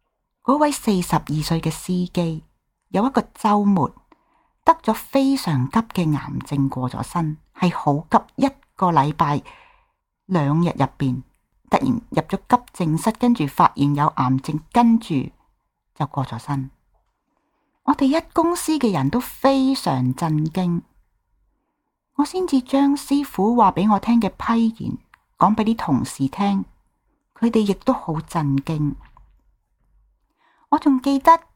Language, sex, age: Chinese, female, 40-59